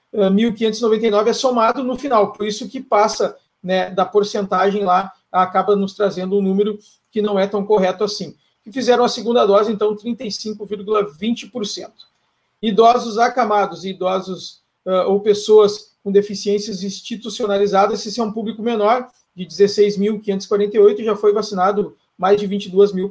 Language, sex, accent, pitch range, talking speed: Portuguese, male, Brazilian, 195-225 Hz, 140 wpm